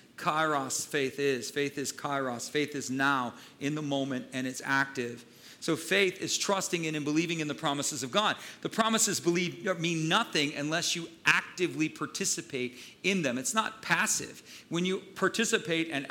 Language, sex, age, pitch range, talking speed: English, male, 40-59, 145-180 Hz, 170 wpm